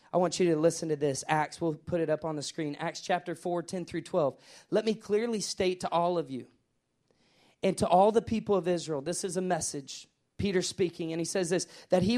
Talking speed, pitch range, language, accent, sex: 235 wpm, 170-225 Hz, English, American, male